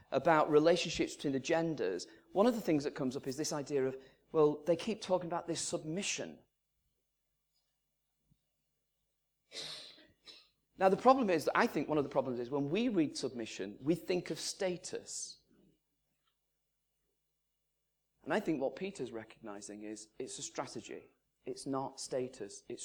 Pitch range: 135-190 Hz